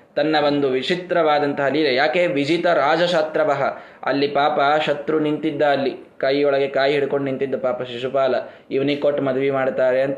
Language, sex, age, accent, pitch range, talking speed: Kannada, male, 20-39, native, 135-175 Hz, 135 wpm